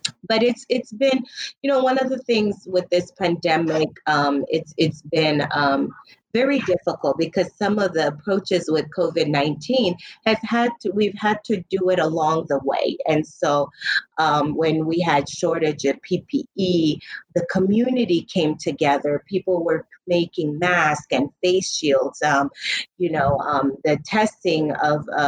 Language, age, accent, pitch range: English, 30-49, American, 150-180 Hz